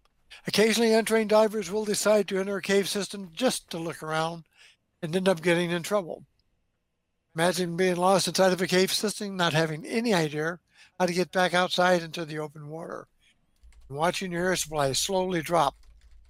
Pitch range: 155-200 Hz